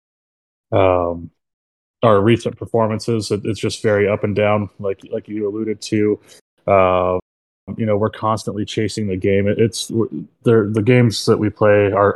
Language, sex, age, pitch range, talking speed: English, male, 20-39, 95-110 Hz, 160 wpm